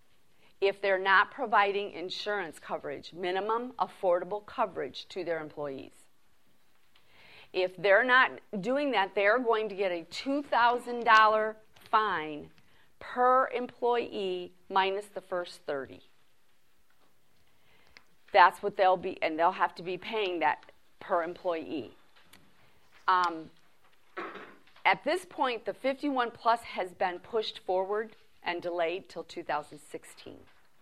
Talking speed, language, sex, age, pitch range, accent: 115 wpm, English, female, 40-59, 175-215 Hz, American